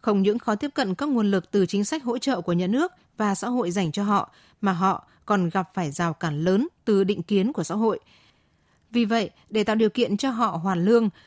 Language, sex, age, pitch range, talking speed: Vietnamese, female, 20-39, 175-230 Hz, 245 wpm